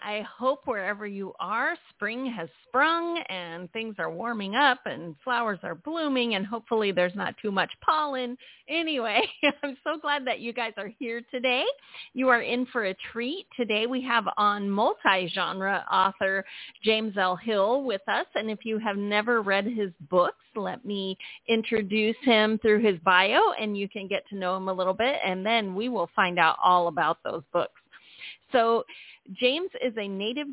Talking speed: 180 wpm